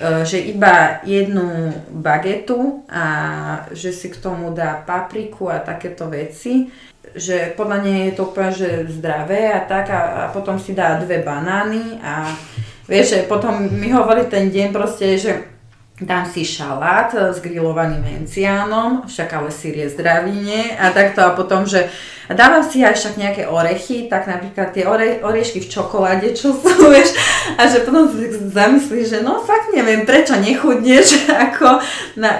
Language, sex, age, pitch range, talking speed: Slovak, female, 30-49, 180-230 Hz, 155 wpm